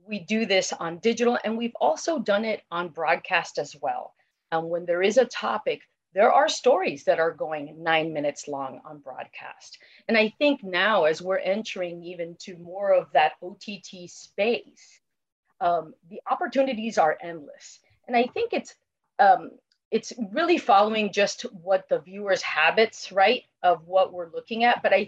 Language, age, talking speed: English, 30-49, 170 wpm